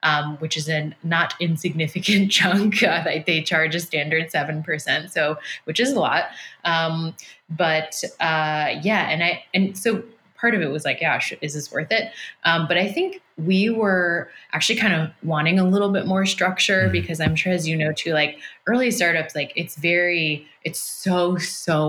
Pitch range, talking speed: 155-190 Hz, 190 wpm